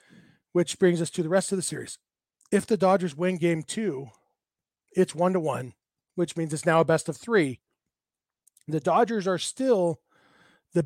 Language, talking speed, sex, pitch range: English, 175 wpm, male, 160-190 Hz